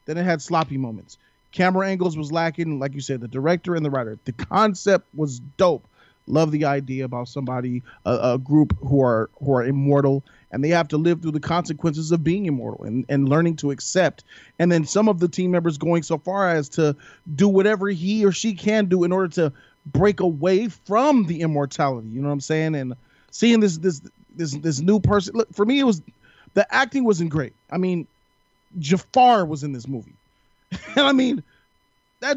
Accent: American